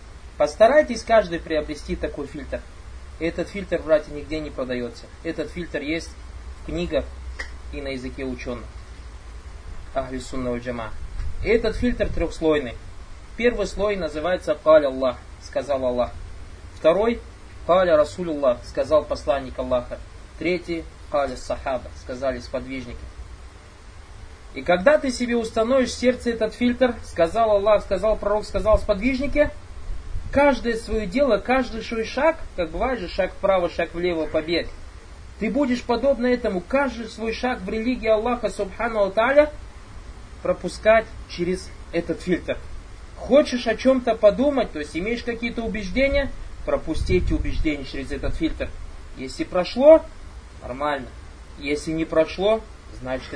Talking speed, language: 120 wpm, Russian